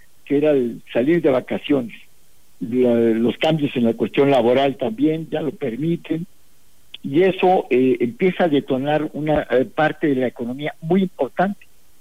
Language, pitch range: Spanish, 125-155 Hz